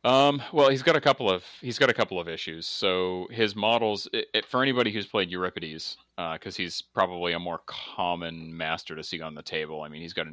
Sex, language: male, English